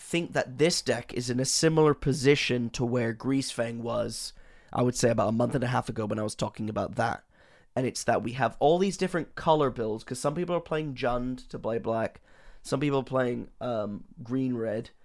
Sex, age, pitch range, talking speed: male, 20-39, 120-140 Hz, 220 wpm